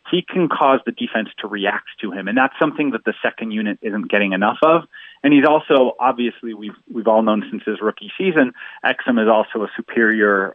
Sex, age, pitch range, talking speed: male, 30-49, 105-125 Hz, 210 wpm